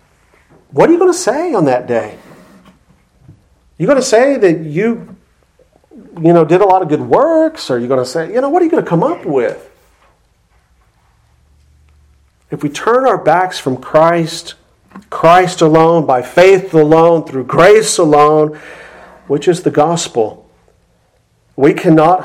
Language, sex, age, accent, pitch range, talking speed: English, male, 40-59, American, 130-165 Hz, 160 wpm